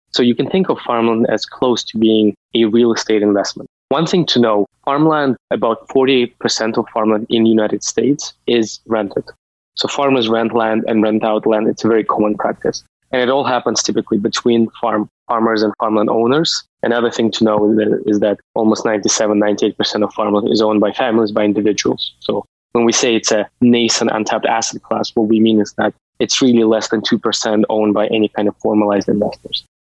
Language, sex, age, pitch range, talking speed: English, male, 20-39, 110-120 Hz, 195 wpm